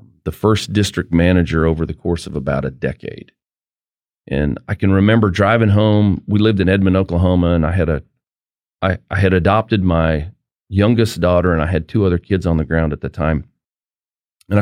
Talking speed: 190 wpm